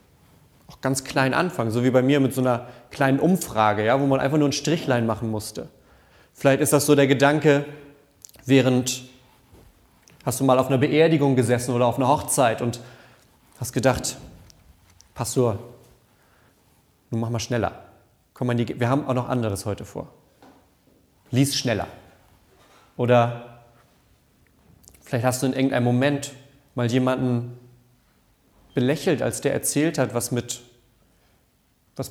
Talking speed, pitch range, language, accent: 140 wpm, 115-140 Hz, German, German